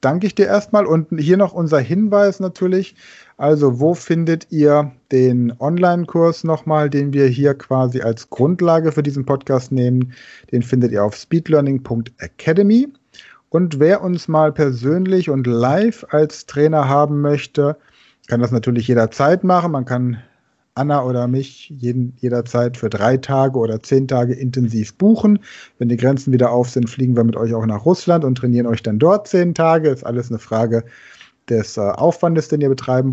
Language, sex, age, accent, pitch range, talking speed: German, male, 40-59, German, 125-165 Hz, 165 wpm